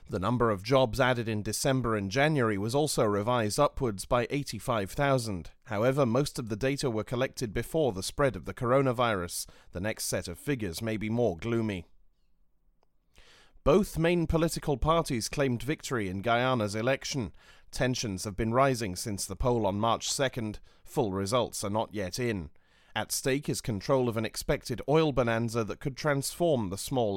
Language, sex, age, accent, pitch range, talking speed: English, male, 30-49, British, 105-135 Hz, 170 wpm